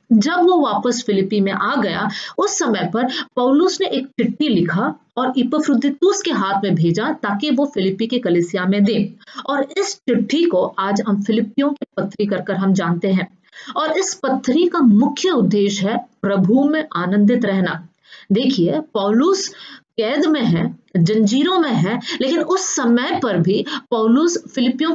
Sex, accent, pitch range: female, Indian, 200-280 Hz